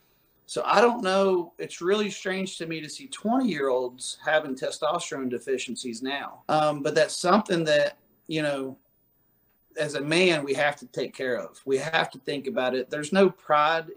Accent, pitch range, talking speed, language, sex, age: American, 140-170 Hz, 185 wpm, English, male, 40-59